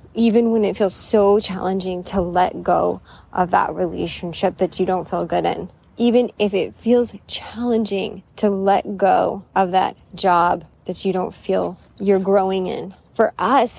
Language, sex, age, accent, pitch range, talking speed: English, female, 20-39, American, 180-210 Hz, 165 wpm